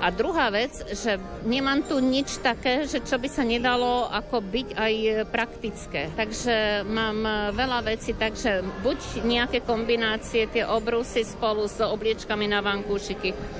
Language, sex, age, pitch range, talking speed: Slovak, female, 50-69, 205-245 Hz, 140 wpm